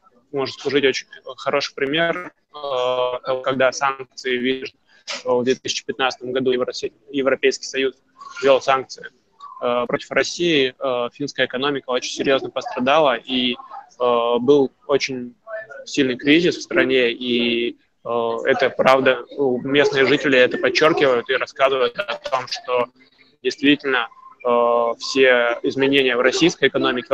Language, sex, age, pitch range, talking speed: Russian, male, 20-39, 125-145 Hz, 105 wpm